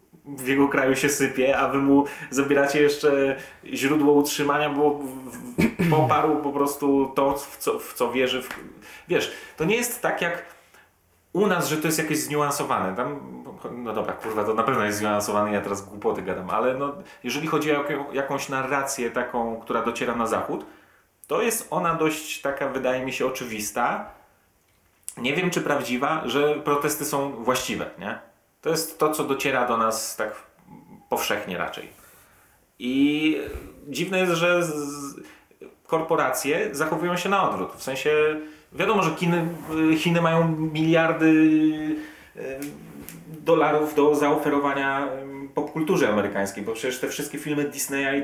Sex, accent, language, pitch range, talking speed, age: male, native, Polish, 135-155 Hz, 140 wpm, 30-49